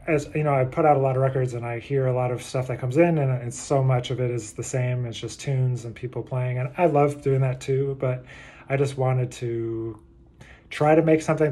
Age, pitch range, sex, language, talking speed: 30-49, 120-140 Hz, male, English, 260 wpm